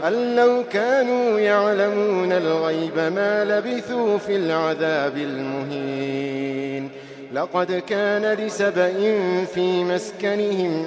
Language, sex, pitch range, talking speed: Arabic, male, 145-205 Hz, 85 wpm